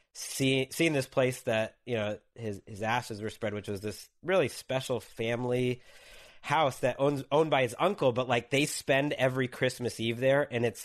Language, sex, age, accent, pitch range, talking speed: English, male, 30-49, American, 100-125 Hz, 190 wpm